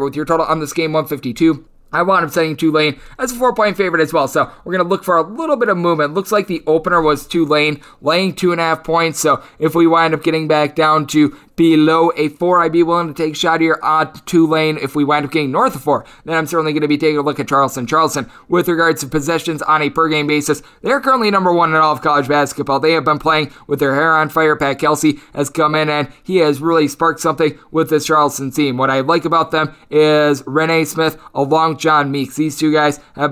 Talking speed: 265 wpm